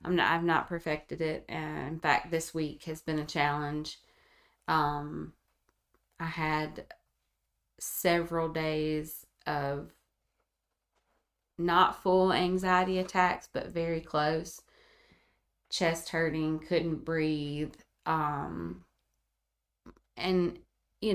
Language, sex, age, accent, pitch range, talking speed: English, female, 20-39, American, 150-170 Hz, 100 wpm